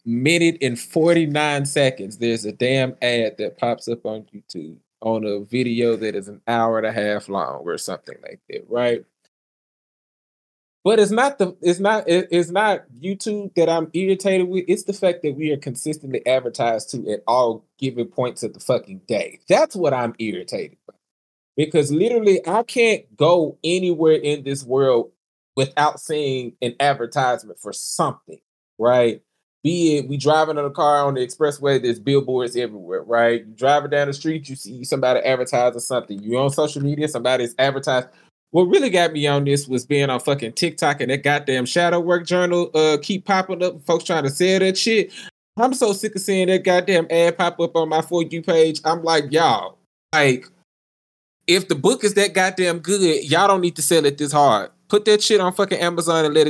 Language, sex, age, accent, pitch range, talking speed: English, male, 20-39, American, 130-180 Hz, 190 wpm